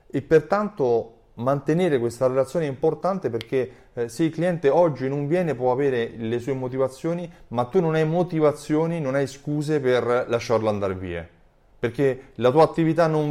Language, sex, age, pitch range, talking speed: Italian, male, 30-49, 110-150 Hz, 160 wpm